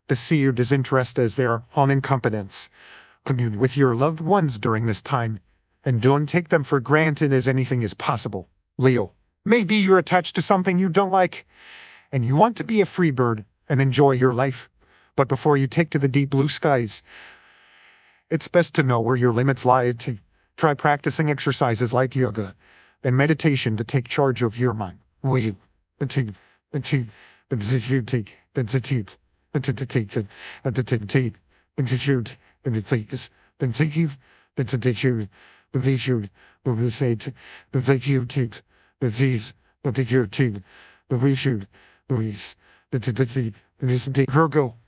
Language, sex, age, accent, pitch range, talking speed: English, male, 40-59, American, 120-145 Hz, 110 wpm